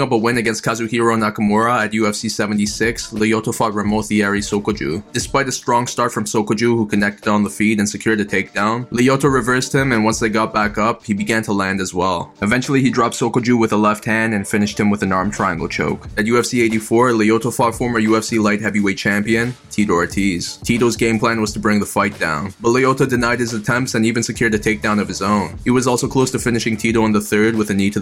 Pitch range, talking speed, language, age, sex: 105-115 Hz, 230 wpm, English, 20-39, male